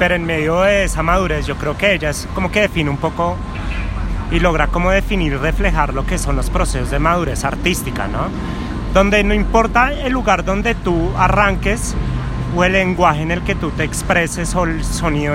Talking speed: 195 wpm